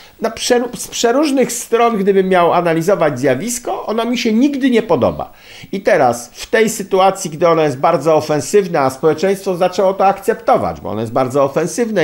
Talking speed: 175 wpm